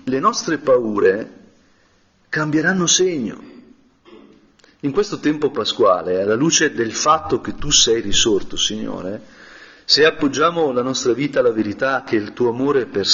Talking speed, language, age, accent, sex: 140 wpm, Italian, 40-59, native, male